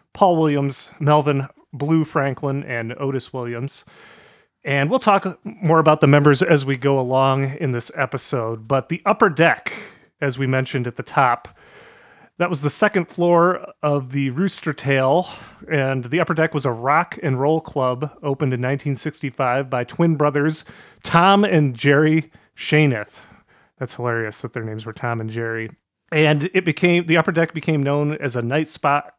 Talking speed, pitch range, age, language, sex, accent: 170 wpm, 130-160 Hz, 30-49, English, male, American